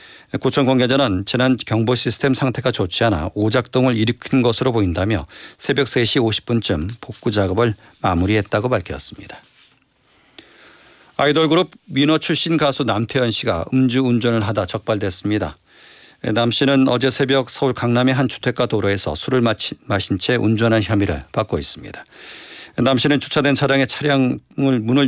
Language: Korean